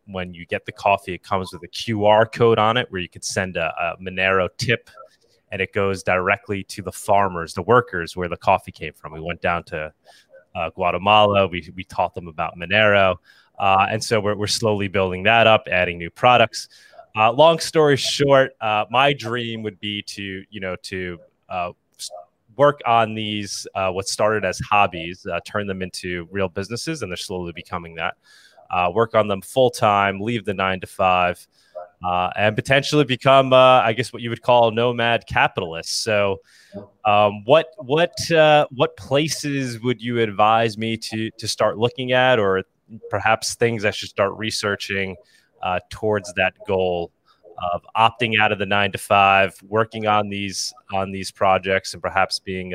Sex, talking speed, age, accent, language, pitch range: male, 180 wpm, 30-49, American, English, 95-115 Hz